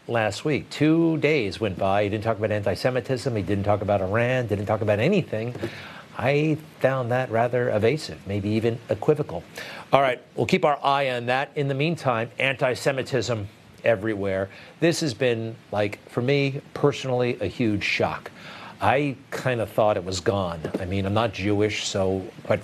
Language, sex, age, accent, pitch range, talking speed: English, male, 40-59, American, 105-135 Hz, 170 wpm